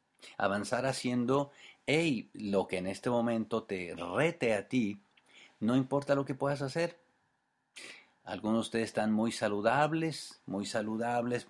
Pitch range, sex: 105-130 Hz, male